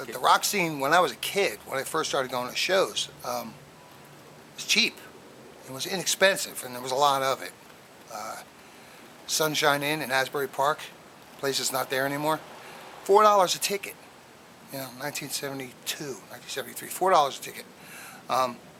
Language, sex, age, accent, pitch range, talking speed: English, male, 40-59, American, 130-165 Hz, 170 wpm